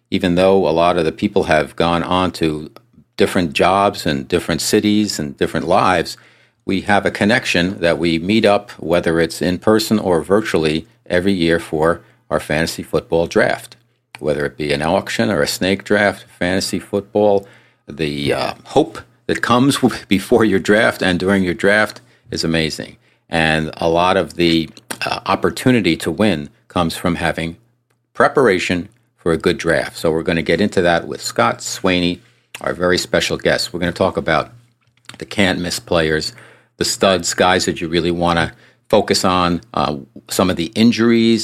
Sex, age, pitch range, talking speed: male, 50-69, 85-110 Hz, 175 wpm